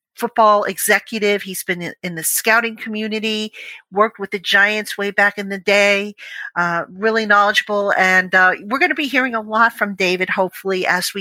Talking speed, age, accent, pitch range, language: 180 wpm, 50-69, American, 185-220 Hz, English